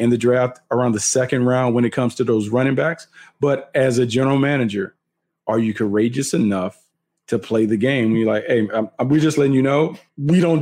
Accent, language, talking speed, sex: American, English, 210 wpm, male